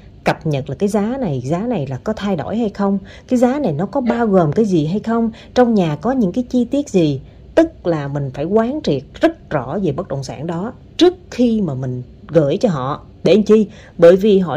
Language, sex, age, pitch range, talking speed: Vietnamese, female, 30-49, 150-220 Hz, 245 wpm